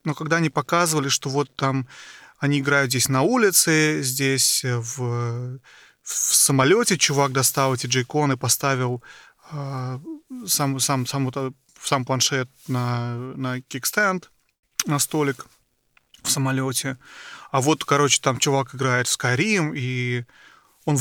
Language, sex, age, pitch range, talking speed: Russian, male, 30-49, 130-165 Hz, 130 wpm